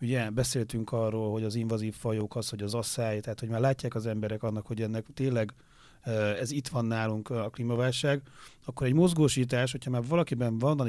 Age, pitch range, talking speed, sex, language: 40-59, 115-135 Hz, 190 wpm, male, Hungarian